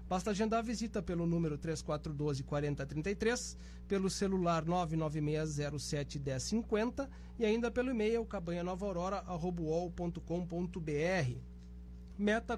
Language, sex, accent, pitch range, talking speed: Portuguese, male, Brazilian, 150-200 Hz, 90 wpm